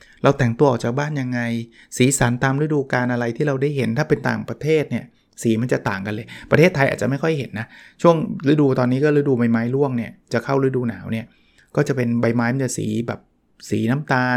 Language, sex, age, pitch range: Thai, male, 20-39, 115-145 Hz